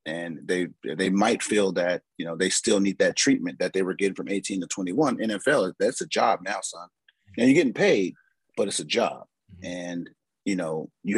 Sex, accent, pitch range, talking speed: male, American, 95-115 Hz, 210 wpm